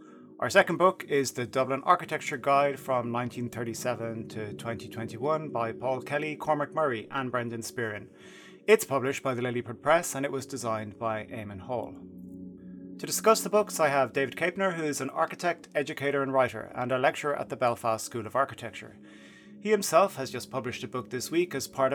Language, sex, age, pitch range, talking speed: English, male, 30-49, 115-150 Hz, 185 wpm